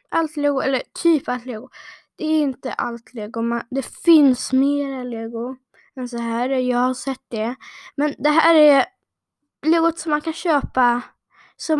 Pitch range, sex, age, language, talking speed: 235-280 Hz, female, 20-39, Swedish, 165 wpm